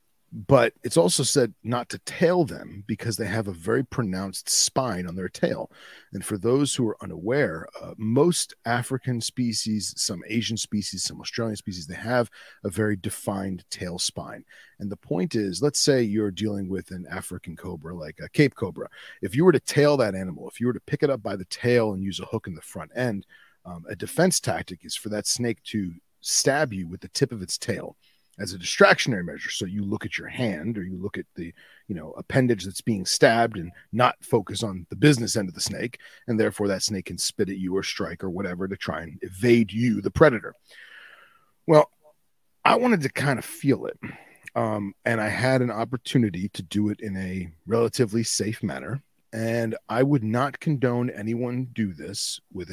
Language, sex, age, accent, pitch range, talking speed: English, male, 40-59, American, 95-120 Hz, 205 wpm